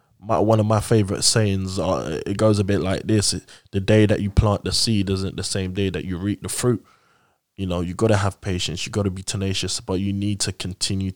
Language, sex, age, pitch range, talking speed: English, male, 20-39, 90-105 Hz, 255 wpm